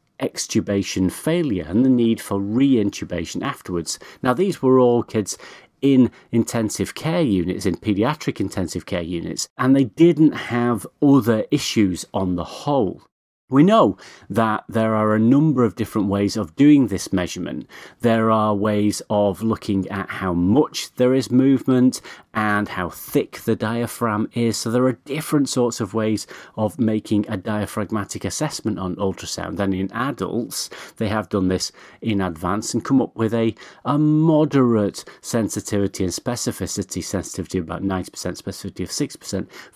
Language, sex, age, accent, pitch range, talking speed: English, male, 40-59, British, 100-130 Hz, 155 wpm